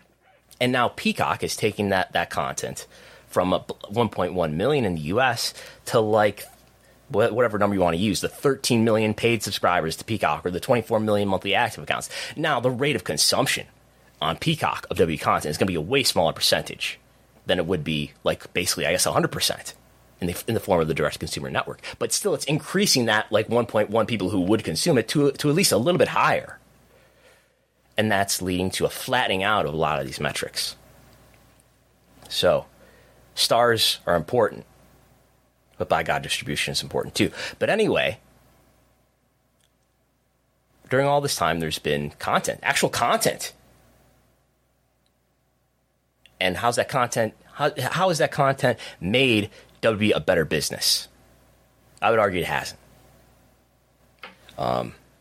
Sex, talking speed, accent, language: male, 165 wpm, American, English